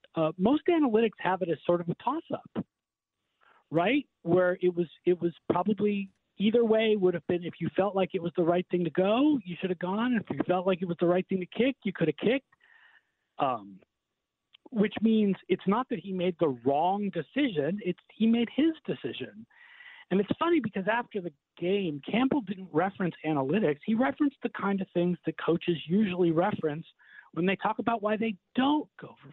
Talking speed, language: 205 wpm, English